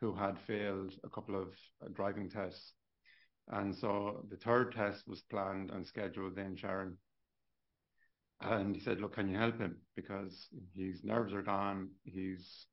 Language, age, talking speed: English, 70-89, 155 wpm